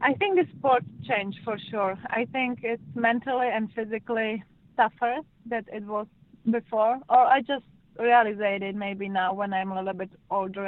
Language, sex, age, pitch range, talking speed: English, female, 20-39, 190-220 Hz, 175 wpm